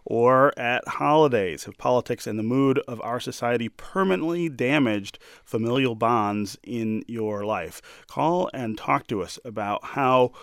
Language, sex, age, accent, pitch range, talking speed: English, male, 30-49, American, 105-130 Hz, 145 wpm